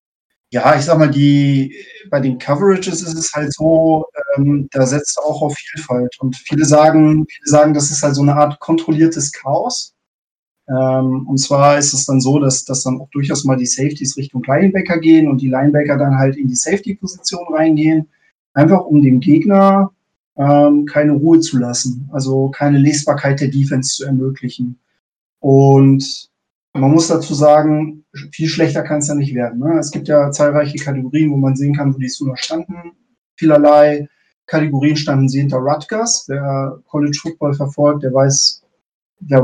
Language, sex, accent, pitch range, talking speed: German, male, German, 135-155 Hz, 170 wpm